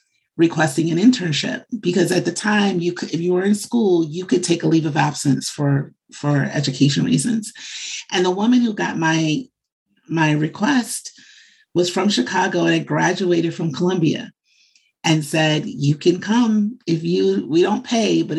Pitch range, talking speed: 155-190 Hz, 170 wpm